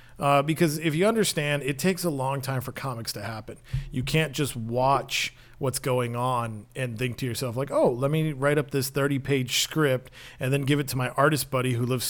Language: English